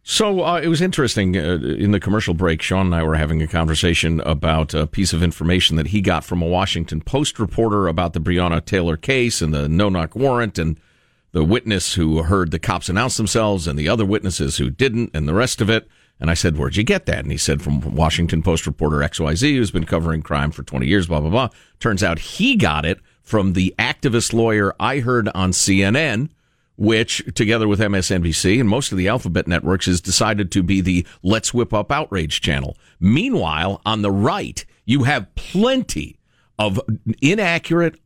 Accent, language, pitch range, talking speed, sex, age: American, English, 85-125 Hz, 200 wpm, male, 50-69